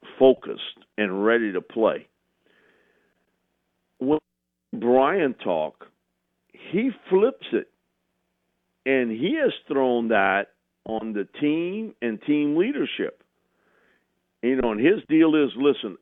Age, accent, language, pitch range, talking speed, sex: 50-69, American, English, 115-160 Hz, 110 wpm, male